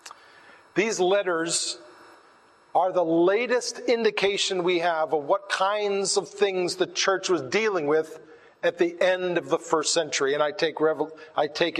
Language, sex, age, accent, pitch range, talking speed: English, male, 40-59, American, 165-200 Hz, 145 wpm